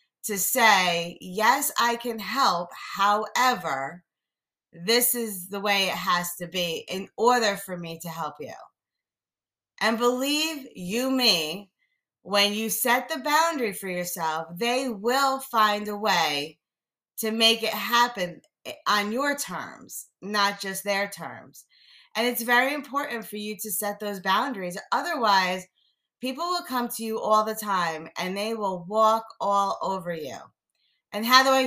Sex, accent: female, American